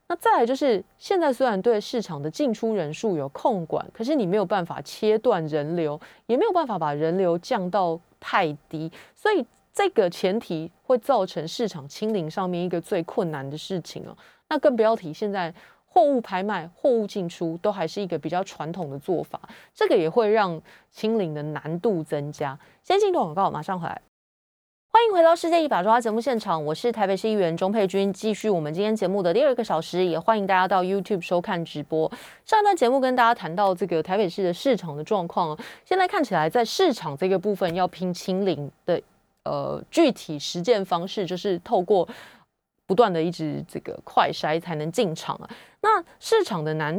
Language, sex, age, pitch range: Chinese, female, 30-49, 165-235 Hz